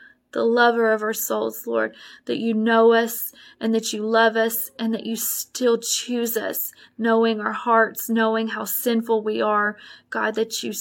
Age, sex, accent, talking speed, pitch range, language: 20-39, female, American, 180 wpm, 215-240 Hz, English